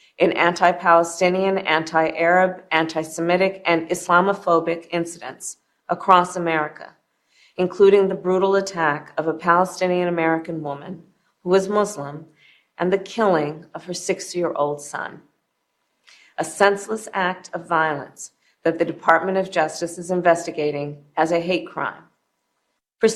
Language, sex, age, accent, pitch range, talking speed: English, female, 40-59, American, 165-200 Hz, 115 wpm